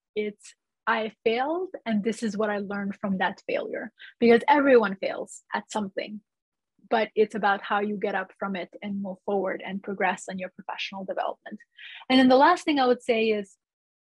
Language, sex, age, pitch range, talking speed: English, female, 30-49, 200-250 Hz, 185 wpm